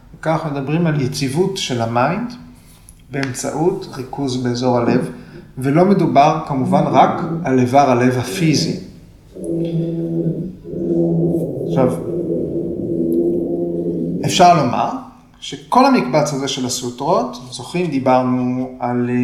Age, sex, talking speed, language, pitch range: 30-49, male, 90 wpm, Hebrew, 125-165 Hz